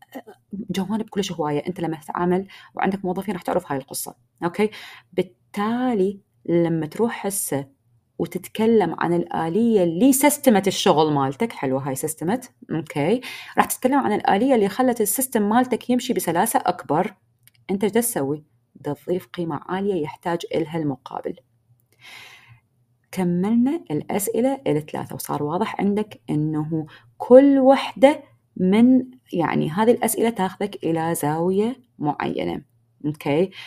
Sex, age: female, 20-39